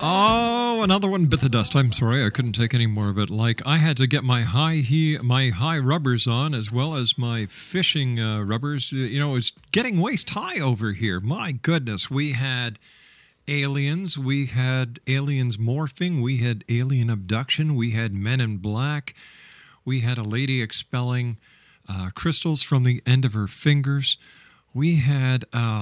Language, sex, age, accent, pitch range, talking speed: English, male, 50-69, American, 115-140 Hz, 175 wpm